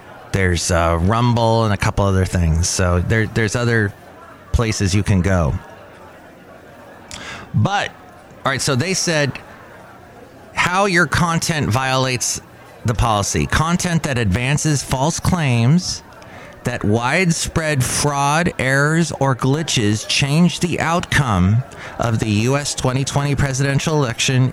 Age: 30-49